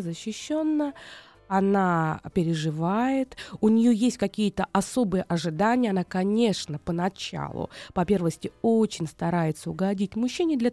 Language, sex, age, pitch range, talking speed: Russian, female, 20-39, 175-230 Hz, 100 wpm